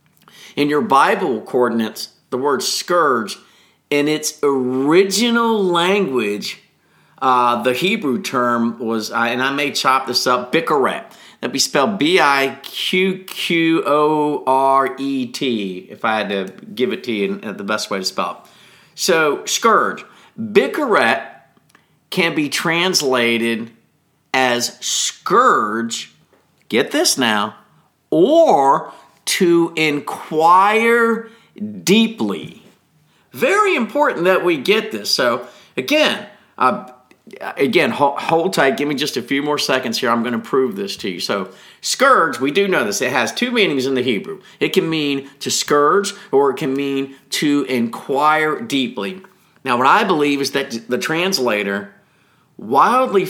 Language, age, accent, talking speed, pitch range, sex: English, 50-69, American, 135 wpm, 125-195 Hz, male